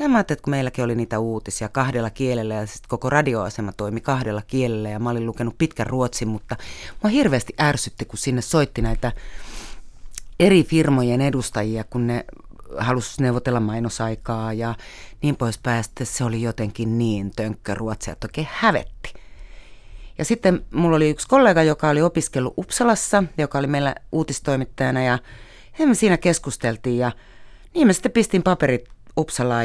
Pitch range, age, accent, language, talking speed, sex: 115-140 Hz, 30-49, native, Finnish, 160 wpm, female